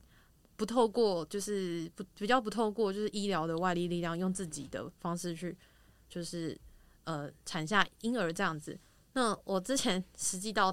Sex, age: female, 20-39